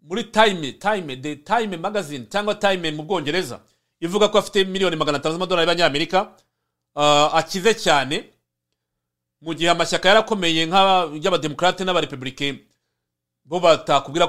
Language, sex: English, male